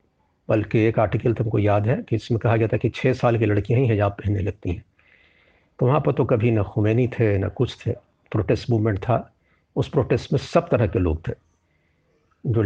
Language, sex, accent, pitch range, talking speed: Hindi, male, native, 100-125 Hz, 210 wpm